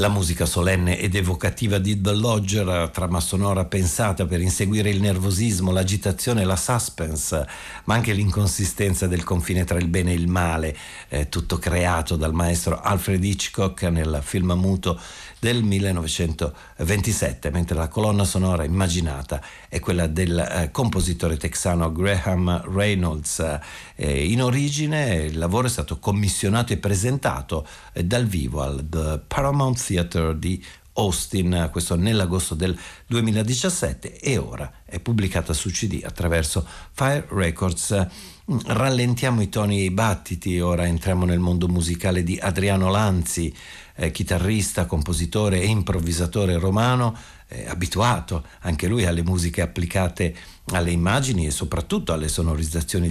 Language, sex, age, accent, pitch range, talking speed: Italian, male, 50-69, native, 85-100 Hz, 130 wpm